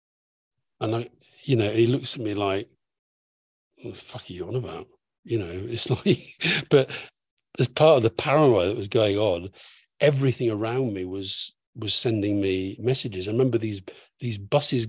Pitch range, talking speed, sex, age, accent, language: 95-125 Hz, 175 wpm, male, 50-69, British, English